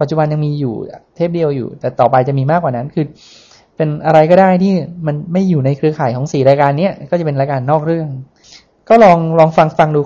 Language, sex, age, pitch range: Thai, male, 20-39, 140-175 Hz